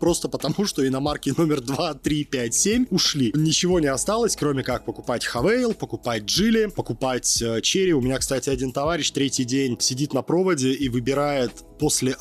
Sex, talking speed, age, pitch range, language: male, 170 wpm, 20-39, 130-170 Hz, Russian